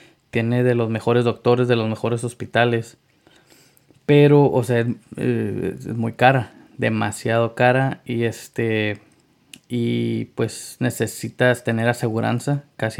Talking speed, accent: 120 wpm, Mexican